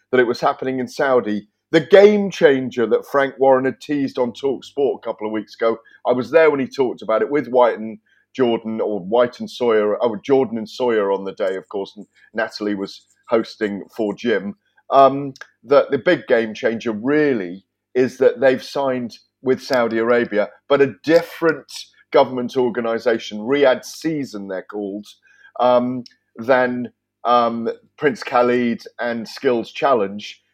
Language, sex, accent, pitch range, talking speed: English, male, British, 115-155 Hz, 165 wpm